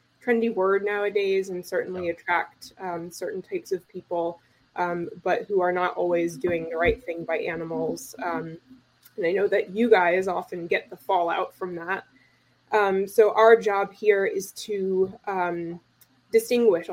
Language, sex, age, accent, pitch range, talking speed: English, female, 20-39, American, 170-205 Hz, 160 wpm